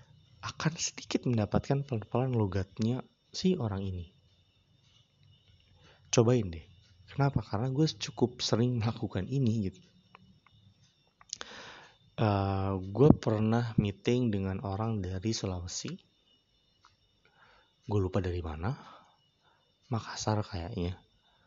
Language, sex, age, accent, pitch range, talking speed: Indonesian, male, 20-39, native, 100-130 Hz, 90 wpm